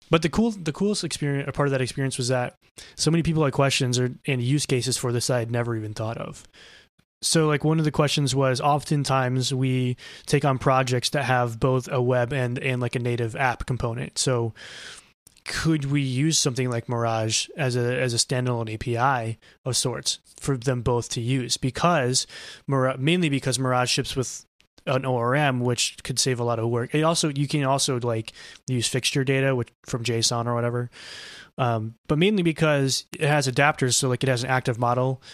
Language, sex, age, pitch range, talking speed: English, male, 20-39, 125-145 Hz, 200 wpm